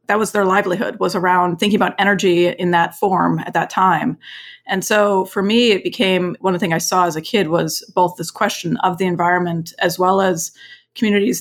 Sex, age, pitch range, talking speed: female, 30-49, 175-200 Hz, 215 wpm